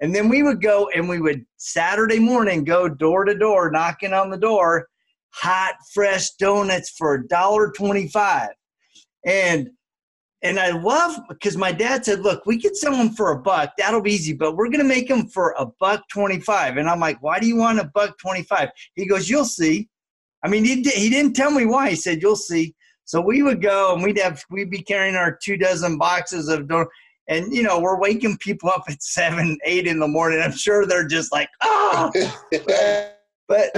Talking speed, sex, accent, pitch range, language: 210 wpm, male, American, 170-215 Hz, English